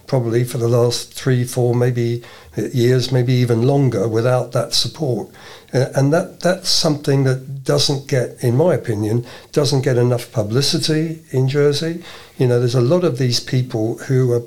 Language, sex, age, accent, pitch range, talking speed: English, male, 60-79, British, 120-140 Hz, 165 wpm